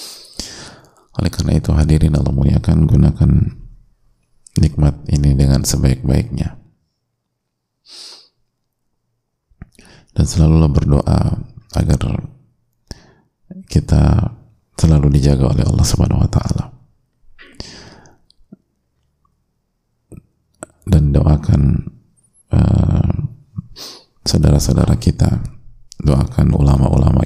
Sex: male